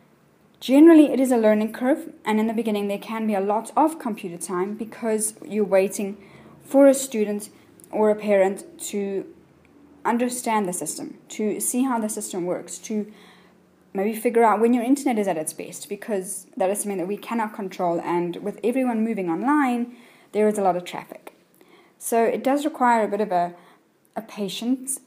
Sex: female